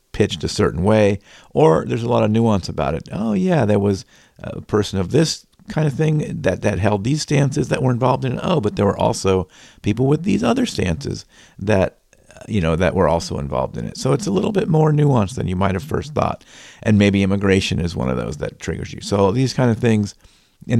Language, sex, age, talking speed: English, male, 50-69, 235 wpm